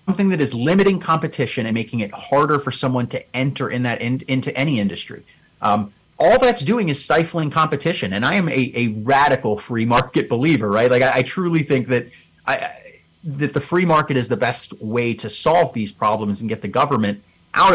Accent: American